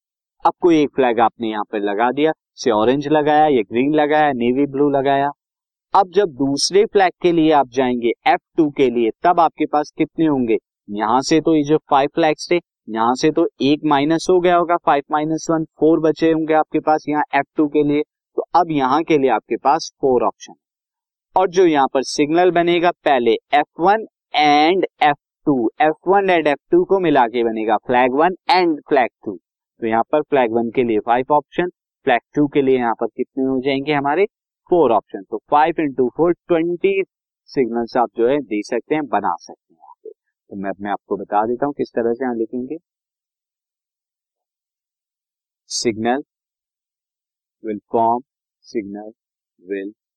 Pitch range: 125-175 Hz